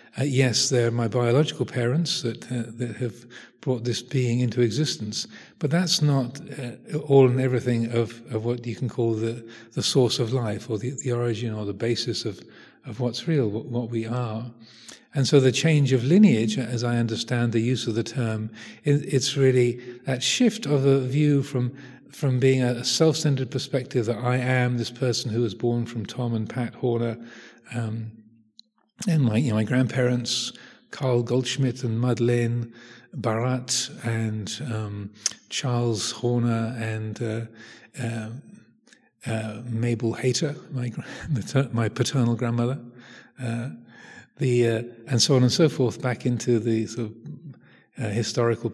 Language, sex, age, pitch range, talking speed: English, male, 40-59, 115-130 Hz, 160 wpm